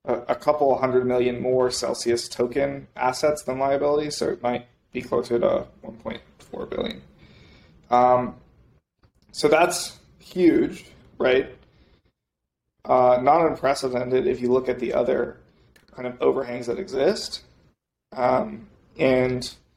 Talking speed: 120 wpm